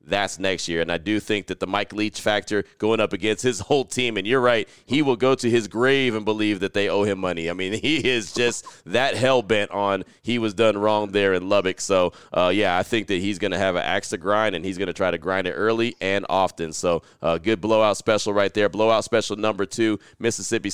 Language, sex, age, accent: English, male, 30-49, American